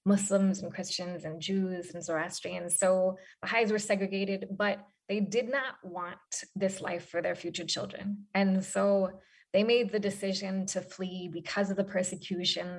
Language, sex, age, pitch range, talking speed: English, female, 20-39, 185-215 Hz, 160 wpm